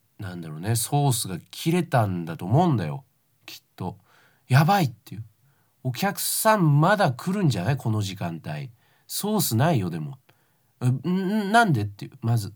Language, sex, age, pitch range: Japanese, male, 40-59, 120-150 Hz